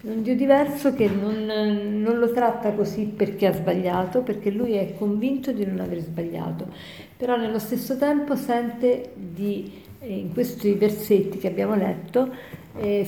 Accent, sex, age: native, female, 50-69